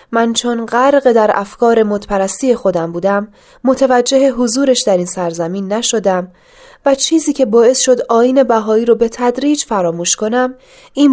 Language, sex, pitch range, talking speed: Persian, female, 200-265 Hz, 145 wpm